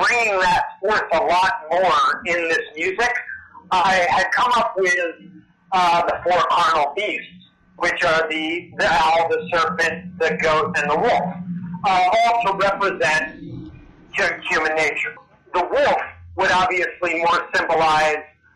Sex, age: male, 50-69